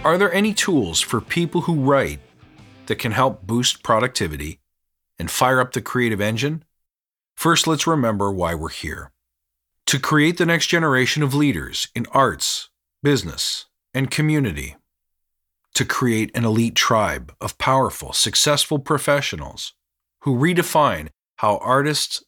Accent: American